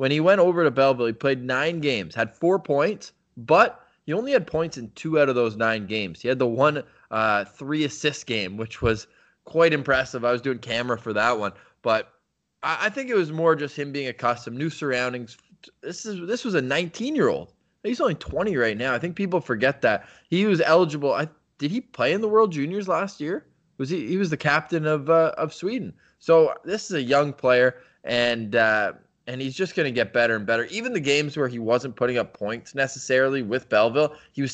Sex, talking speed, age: male, 225 wpm, 20-39